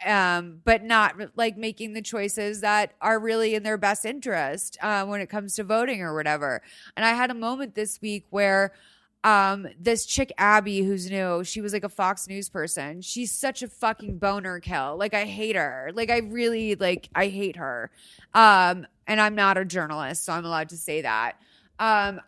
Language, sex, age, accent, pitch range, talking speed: English, female, 20-39, American, 195-235 Hz, 200 wpm